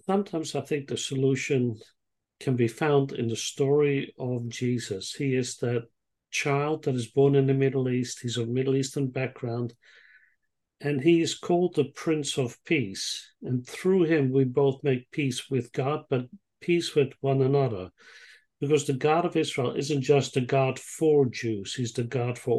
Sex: male